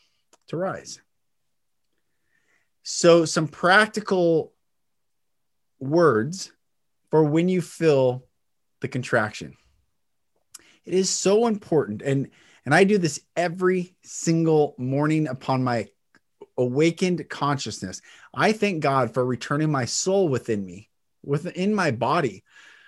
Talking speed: 105 wpm